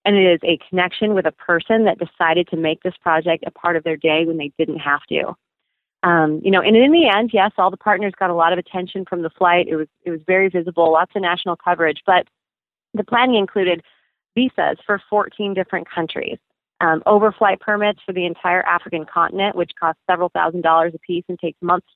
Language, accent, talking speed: English, American, 220 wpm